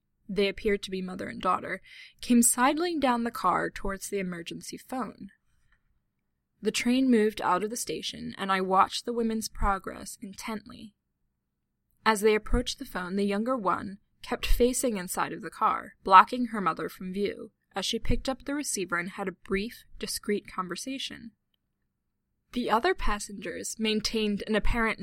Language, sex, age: English, female, 10-29